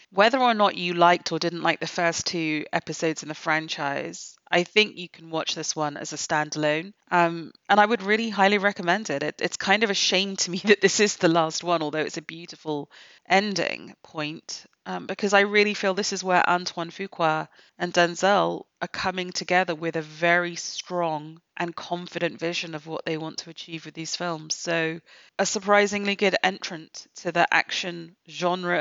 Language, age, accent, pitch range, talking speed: English, 30-49, British, 165-195 Hz, 195 wpm